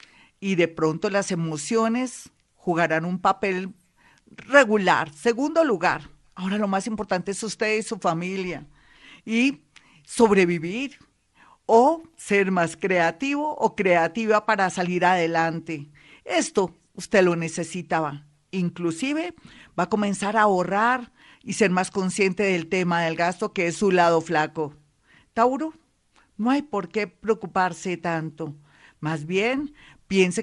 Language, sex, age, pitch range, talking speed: Spanish, female, 50-69, 175-225 Hz, 125 wpm